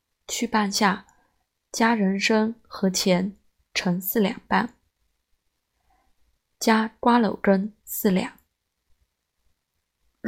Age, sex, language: 20-39, female, Chinese